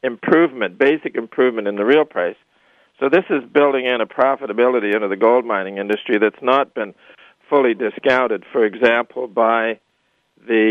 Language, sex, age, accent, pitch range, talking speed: English, male, 50-69, American, 110-130 Hz, 155 wpm